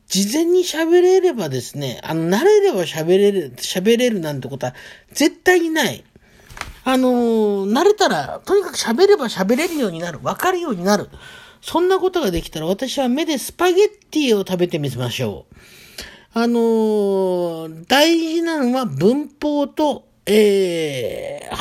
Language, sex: Japanese, male